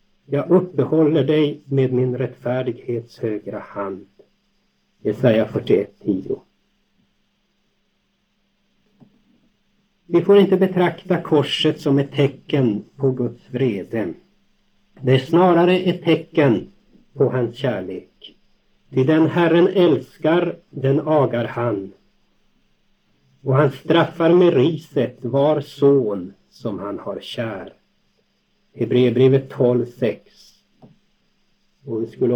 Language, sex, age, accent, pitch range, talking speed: Swedish, male, 60-79, native, 120-170 Hz, 100 wpm